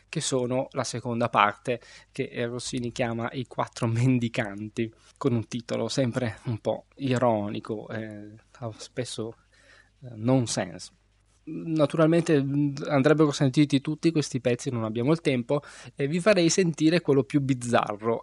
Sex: male